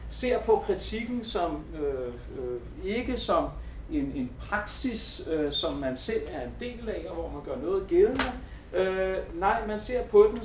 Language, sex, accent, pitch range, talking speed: English, male, Danish, 170-245 Hz, 180 wpm